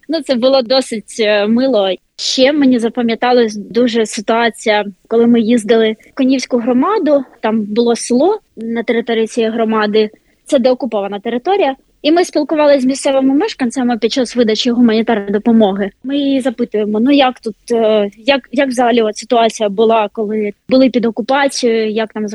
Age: 20-39